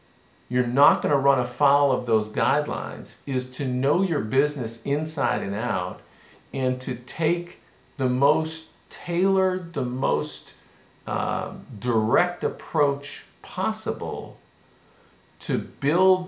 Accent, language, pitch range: American, English, 110-145 Hz